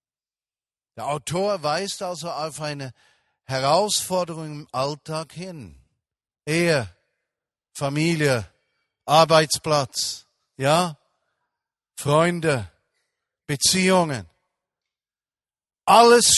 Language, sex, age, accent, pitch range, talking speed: German, male, 50-69, German, 140-190 Hz, 60 wpm